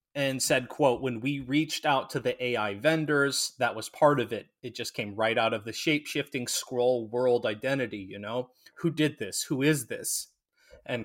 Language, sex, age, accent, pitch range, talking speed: English, male, 30-49, American, 120-155 Hz, 195 wpm